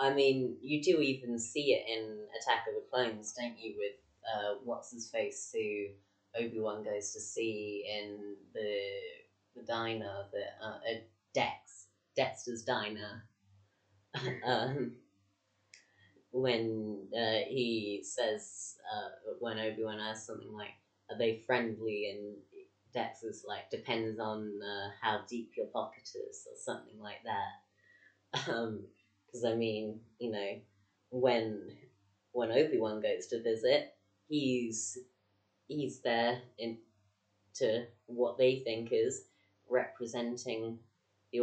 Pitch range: 105-125 Hz